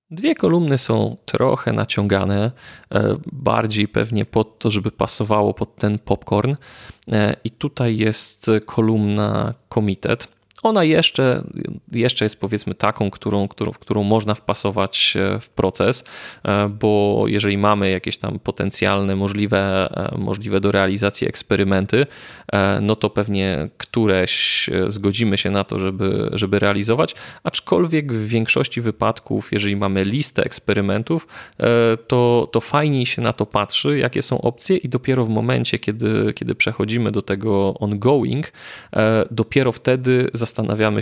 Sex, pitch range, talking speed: male, 100-120 Hz, 125 wpm